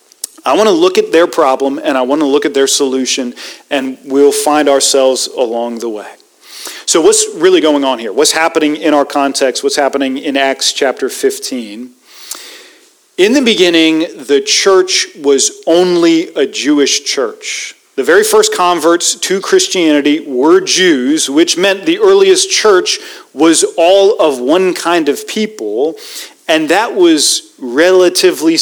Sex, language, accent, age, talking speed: male, English, American, 40-59, 155 wpm